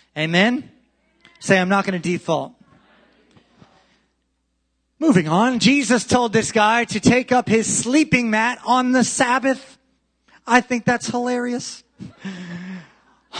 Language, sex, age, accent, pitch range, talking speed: English, male, 30-49, American, 170-235 Hz, 115 wpm